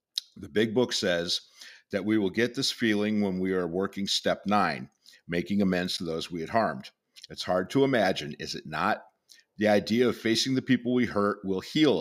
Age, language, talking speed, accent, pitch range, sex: 50-69, English, 200 wpm, American, 95-120 Hz, male